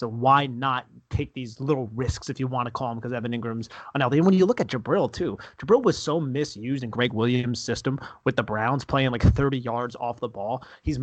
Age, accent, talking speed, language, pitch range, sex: 30-49, American, 235 wpm, English, 120-140 Hz, male